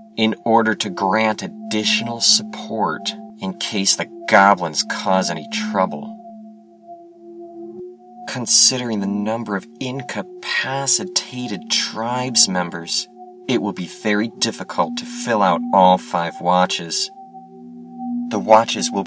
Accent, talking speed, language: American, 105 wpm, English